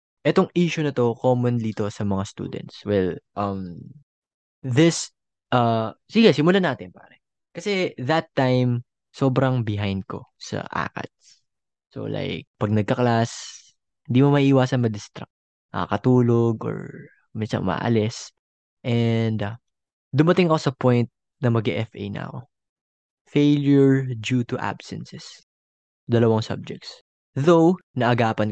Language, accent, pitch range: Filipino, native, 105-135 Hz